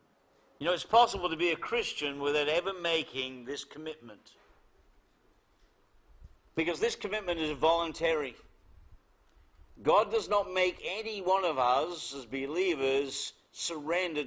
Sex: male